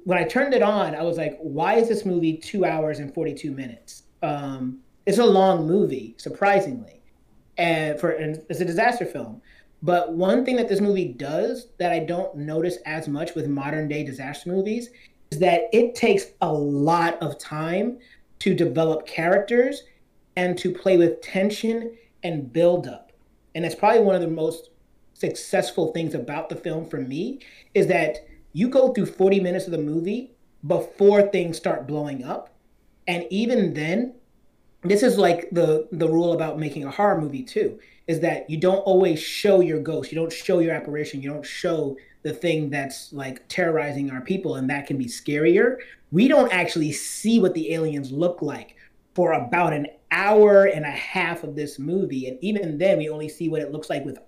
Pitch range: 155-195 Hz